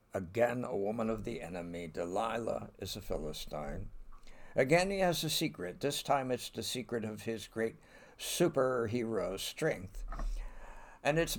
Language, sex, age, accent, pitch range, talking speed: English, male, 60-79, American, 90-120 Hz, 140 wpm